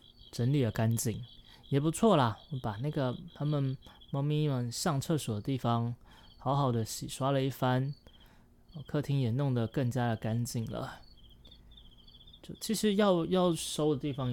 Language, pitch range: Chinese, 115-140 Hz